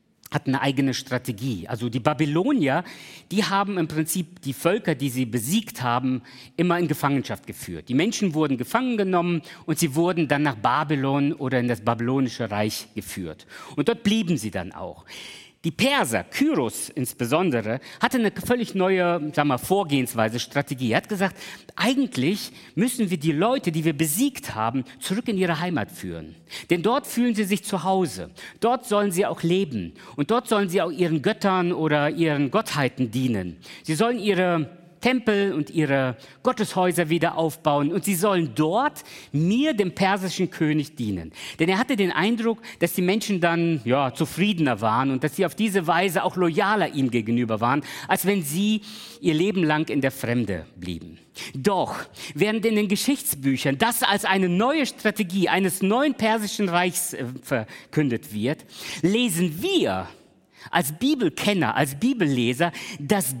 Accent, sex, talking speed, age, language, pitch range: German, male, 160 wpm, 50-69, German, 135-205 Hz